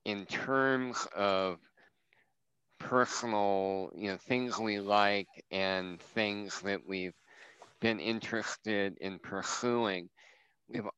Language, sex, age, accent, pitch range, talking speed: English, male, 50-69, American, 95-110 Hz, 100 wpm